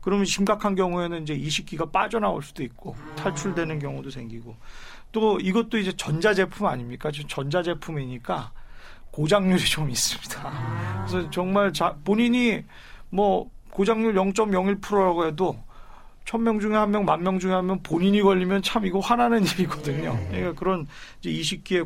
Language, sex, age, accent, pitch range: Korean, male, 40-59, native, 150-195 Hz